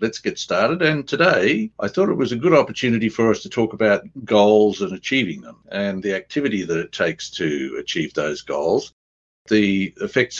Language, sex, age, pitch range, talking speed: English, male, 60-79, 85-115 Hz, 190 wpm